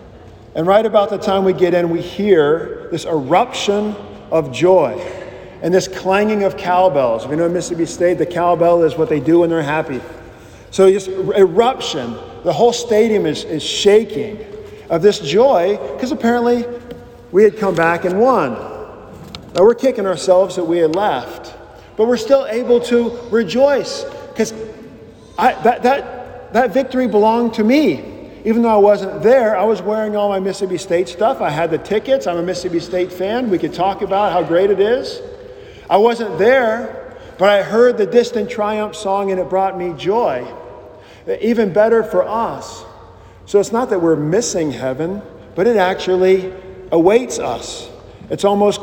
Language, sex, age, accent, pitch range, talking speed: English, male, 40-59, American, 180-235 Hz, 170 wpm